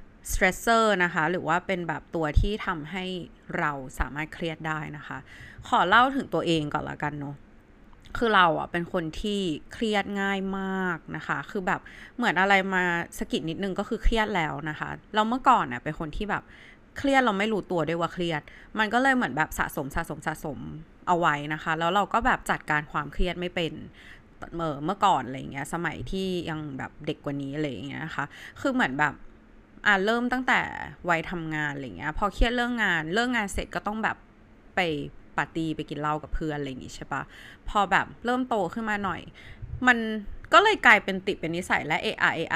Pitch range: 155-205 Hz